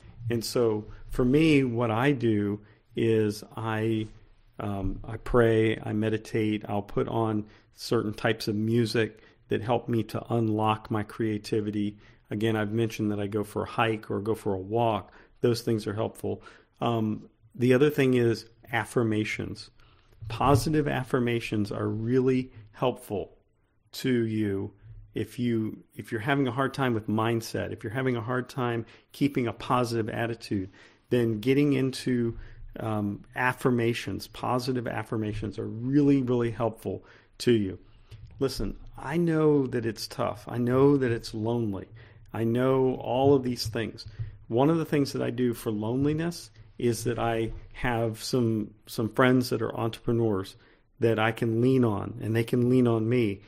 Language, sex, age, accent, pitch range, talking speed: English, male, 40-59, American, 110-125 Hz, 160 wpm